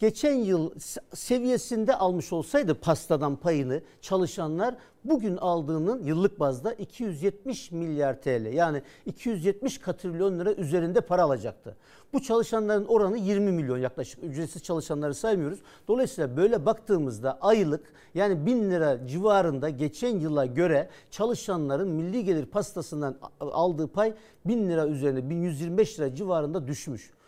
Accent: native